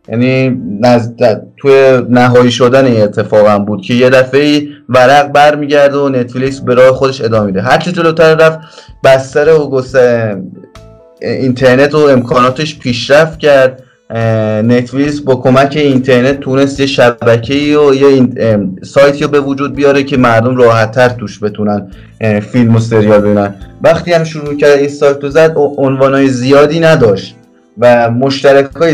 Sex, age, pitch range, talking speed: male, 20-39, 115-145 Hz, 135 wpm